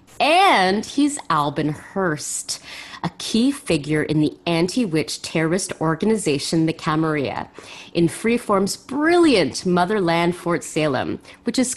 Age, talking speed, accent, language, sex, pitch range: 30-49, 110 wpm, American, English, female, 160-235 Hz